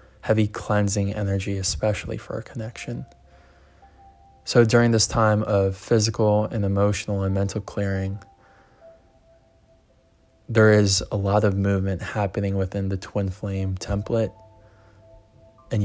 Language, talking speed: English, 115 wpm